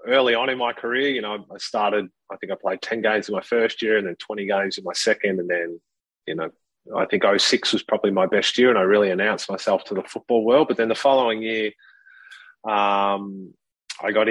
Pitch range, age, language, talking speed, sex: 100-125 Hz, 30-49, English, 230 wpm, male